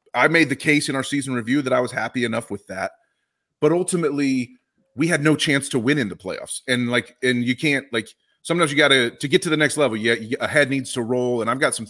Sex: male